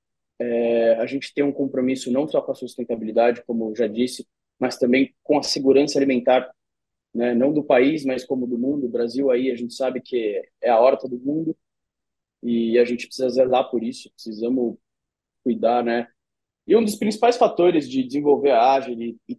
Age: 20-39